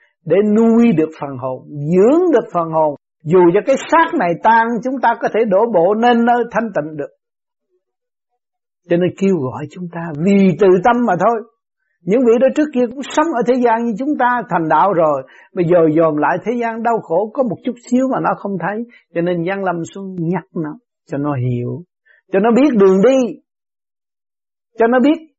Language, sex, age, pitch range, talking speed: Vietnamese, male, 60-79, 155-240 Hz, 205 wpm